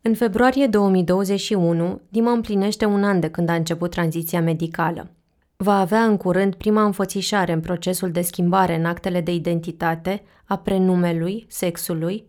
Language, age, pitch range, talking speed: Romanian, 20-39, 170-190 Hz, 145 wpm